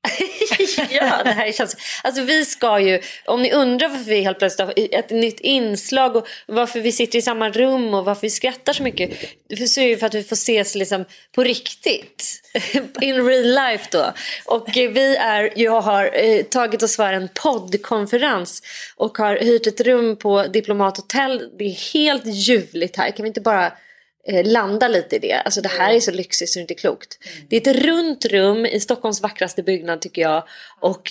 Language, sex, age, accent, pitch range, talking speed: Swedish, female, 30-49, native, 195-260 Hz, 195 wpm